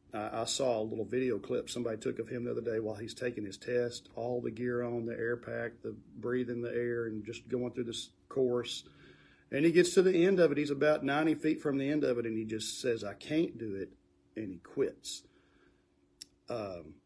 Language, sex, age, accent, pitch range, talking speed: English, male, 40-59, American, 95-145 Hz, 225 wpm